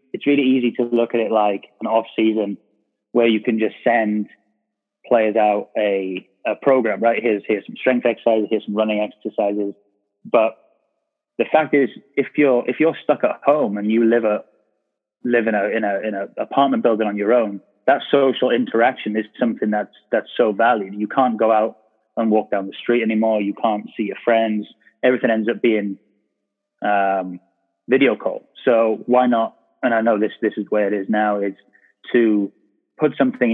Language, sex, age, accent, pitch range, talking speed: English, male, 20-39, British, 100-115 Hz, 190 wpm